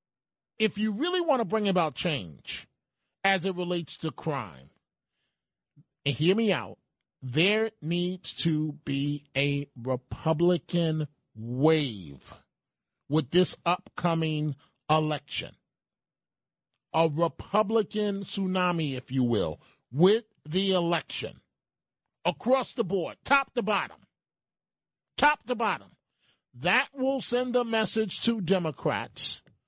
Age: 40-59